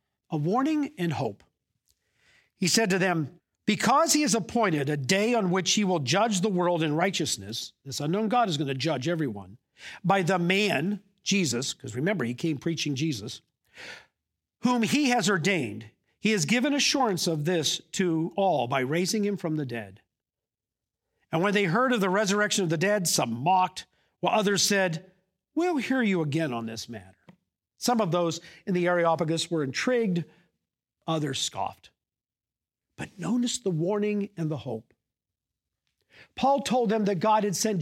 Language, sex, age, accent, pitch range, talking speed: English, male, 50-69, American, 150-215 Hz, 165 wpm